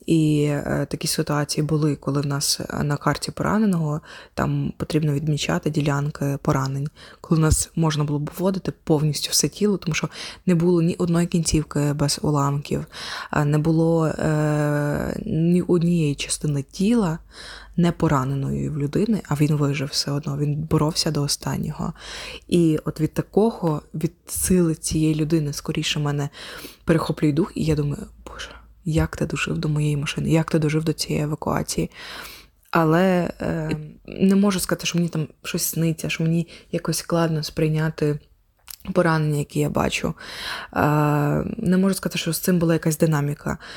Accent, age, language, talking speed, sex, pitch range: native, 20-39, Ukrainian, 155 wpm, female, 150-175 Hz